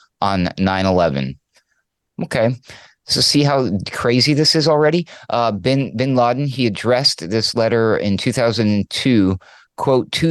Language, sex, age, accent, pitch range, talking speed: English, male, 30-49, American, 95-120 Hz, 135 wpm